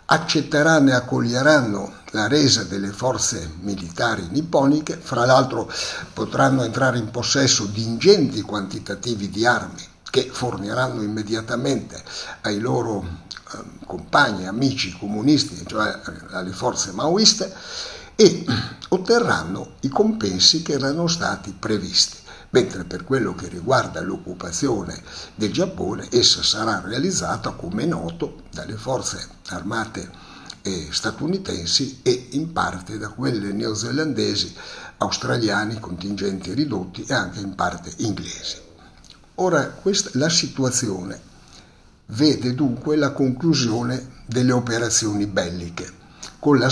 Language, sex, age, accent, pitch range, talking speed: Italian, male, 60-79, native, 100-145 Hz, 105 wpm